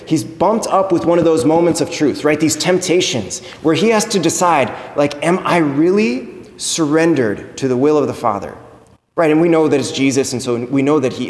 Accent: American